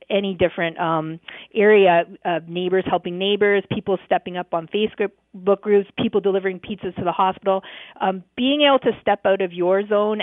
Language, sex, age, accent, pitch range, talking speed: English, female, 40-59, American, 170-200 Hz, 180 wpm